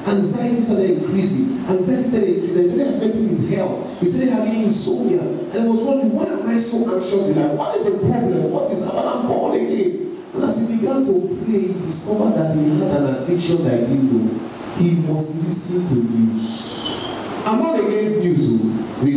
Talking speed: 195 wpm